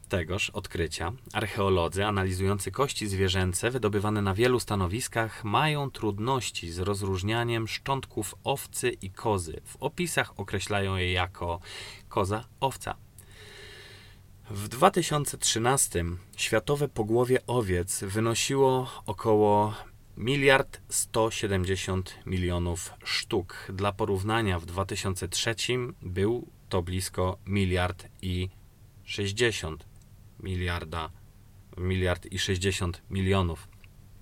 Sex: male